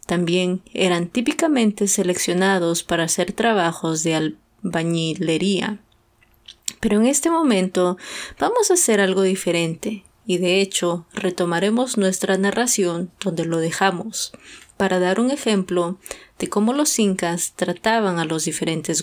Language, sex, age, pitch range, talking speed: English, female, 20-39, 180-220 Hz, 125 wpm